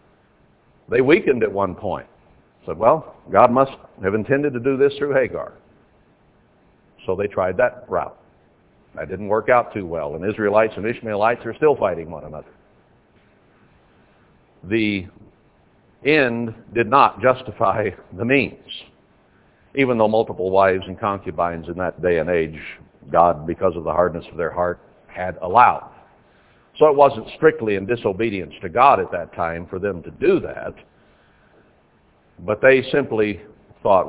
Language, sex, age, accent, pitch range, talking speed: English, male, 60-79, American, 95-135 Hz, 150 wpm